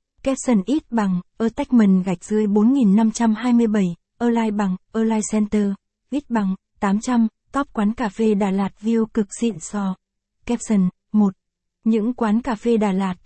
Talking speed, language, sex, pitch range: 165 wpm, Vietnamese, female, 205-235 Hz